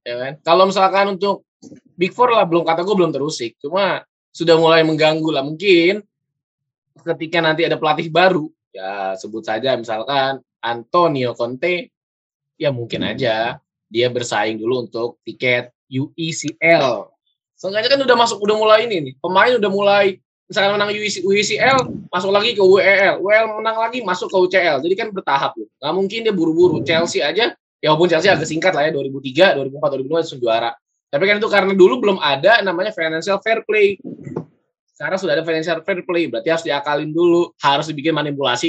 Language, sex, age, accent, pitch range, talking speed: Indonesian, male, 20-39, native, 145-195 Hz, 170 wpm